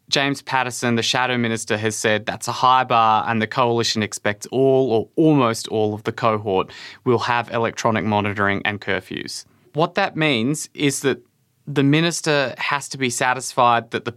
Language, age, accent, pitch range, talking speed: English, 20-39, Australian, 115-135 Hz, 175 wpm